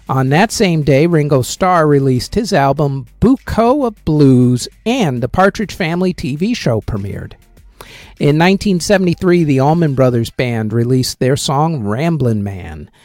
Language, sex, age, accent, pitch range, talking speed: English, male, 50-69, American, 125-185 Hz, 140 wpm